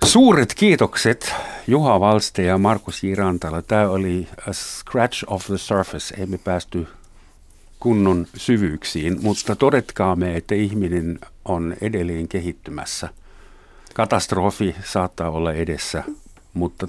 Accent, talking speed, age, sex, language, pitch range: native, 105 wpm, 60-79, male, Finnish, 85-105 Hz